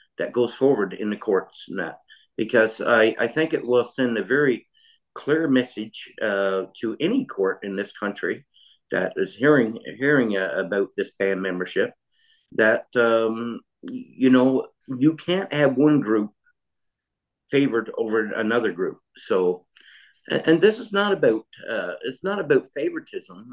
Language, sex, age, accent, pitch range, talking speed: English, male, 50-69, American, 110-160 Hz, 145 wpm